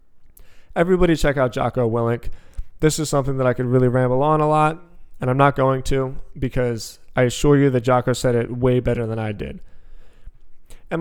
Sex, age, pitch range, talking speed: male, 20-39, 110-145 Hz, 190 wpm